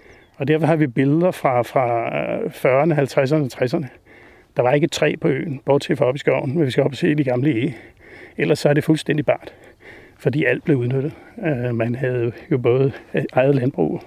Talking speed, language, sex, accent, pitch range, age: 200 wpm, Danish, male, native, 125-155 Hz, 60-79